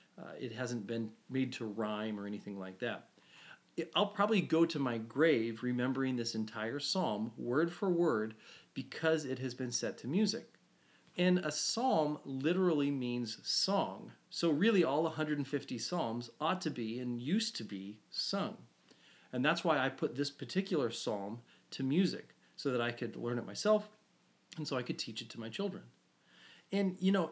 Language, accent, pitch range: English, American, 125-180 Hz